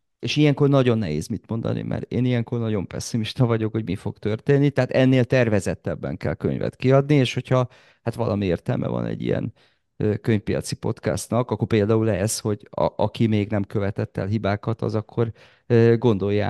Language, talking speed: Hungarian, 160 wpm